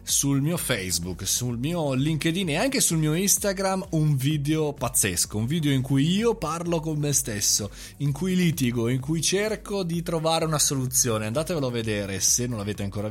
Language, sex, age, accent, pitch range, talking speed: Italian, male, 30-49, native, 105-155 Hz, 185 wpm